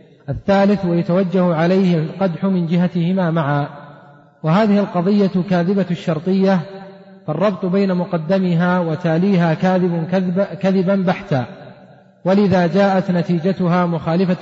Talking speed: 95 wpm